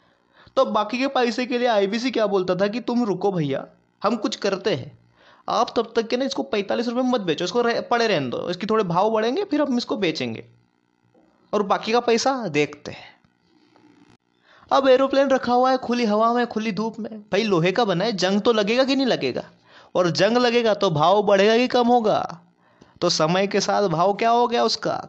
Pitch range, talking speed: 185-240 Hz, 210 wpm